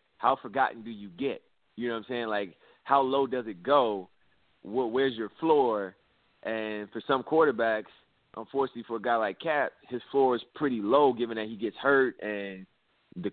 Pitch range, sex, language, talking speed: 105-125 Hz, male, English, 190 wpm